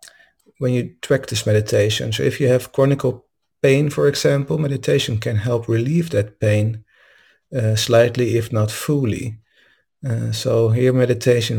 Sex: male